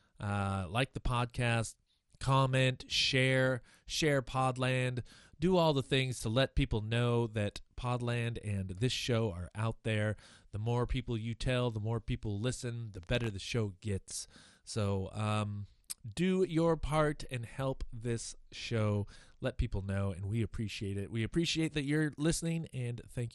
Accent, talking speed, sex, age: American, 155 wpm, male, 30-49